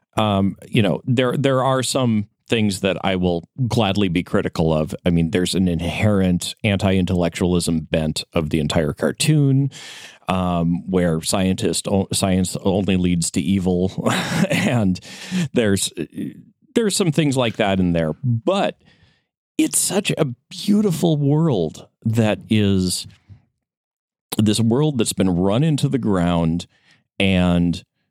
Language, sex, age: English, male, 40-59